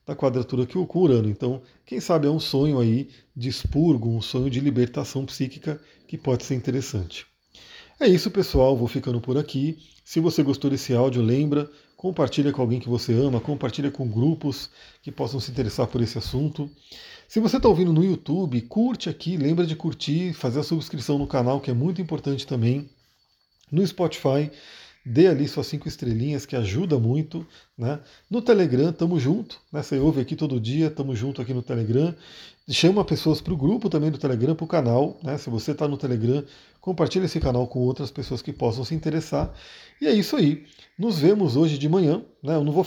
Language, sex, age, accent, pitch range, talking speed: Portuguese, male, 40-59, Brazilian, 125-155 Hz, 195 wpm